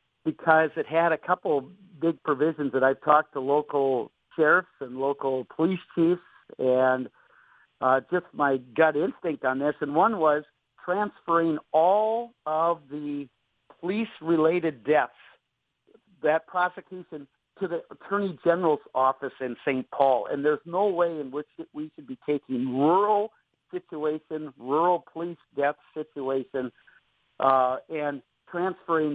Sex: male